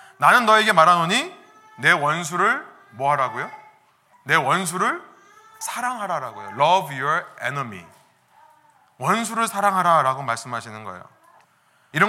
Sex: male